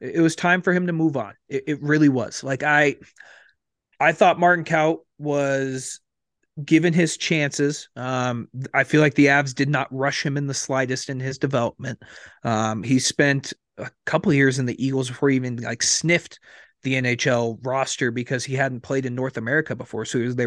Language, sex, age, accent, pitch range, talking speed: English, male, 30-49, American, 125-150 Hz, 195 wpm